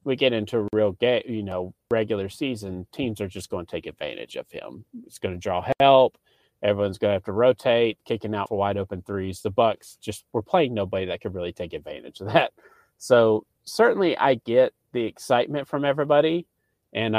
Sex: male